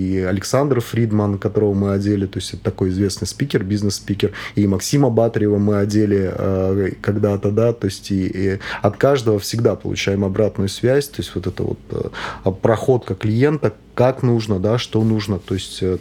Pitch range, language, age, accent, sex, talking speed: 100-115 Hz, Russian, 30-49, native, male, 165 wpm